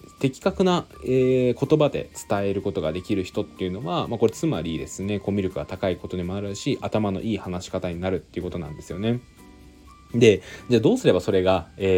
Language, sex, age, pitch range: Japanese, male, 20-39, 90-115 Hz